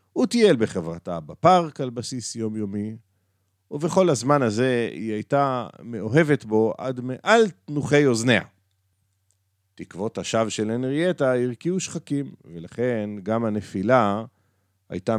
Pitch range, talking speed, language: 95-145 Hz, 110 wpm, Hebrew